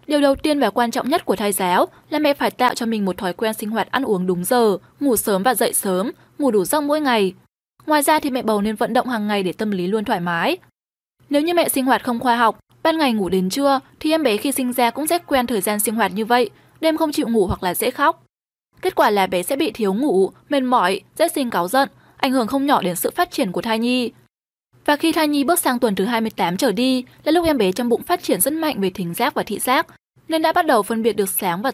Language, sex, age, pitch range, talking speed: Vietnamese, female, 10-29, 215-295 Hz, 280 wpm